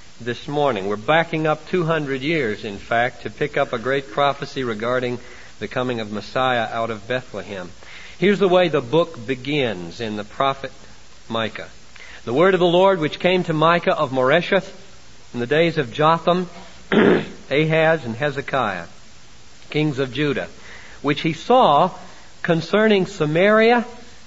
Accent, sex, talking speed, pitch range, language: American, male, 150 wpm, 145-200 Hz, English